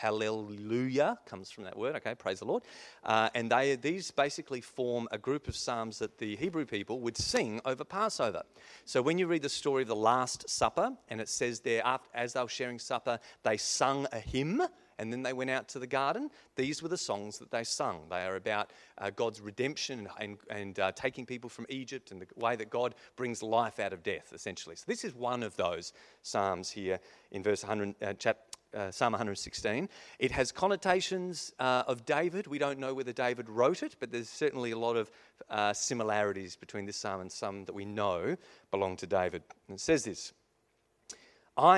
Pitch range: 105-145 Hz